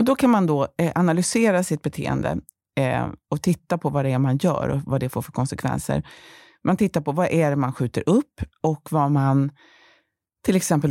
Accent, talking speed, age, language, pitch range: native, 210 wpm, 30-49, Swedish, 140-185 Hz